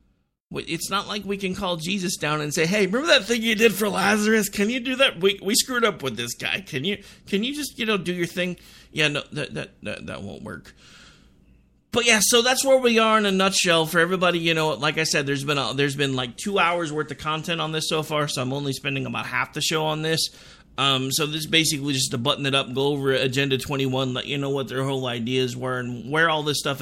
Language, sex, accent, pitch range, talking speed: English, male, American, 130-180 Hz, 260 wpm